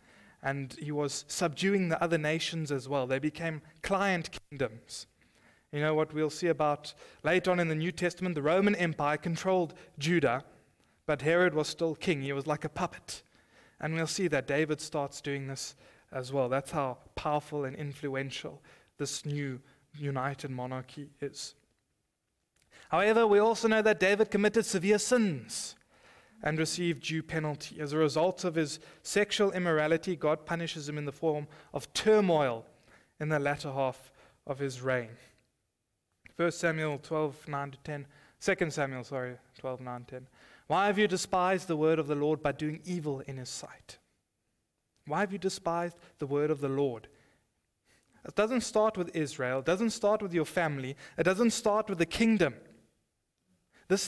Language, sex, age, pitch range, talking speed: English, male, 20-39, 140-180 Hz, 160 wpm